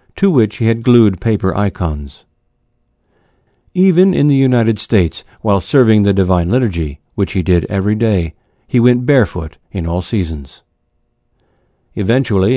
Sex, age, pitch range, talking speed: male, 60-79, 95-130 Hz, 140 wpm